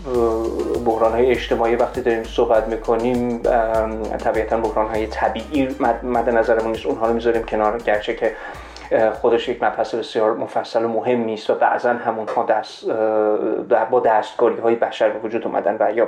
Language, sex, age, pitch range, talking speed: Persian, male, 30-49, 115-130 Hz, 150 wpm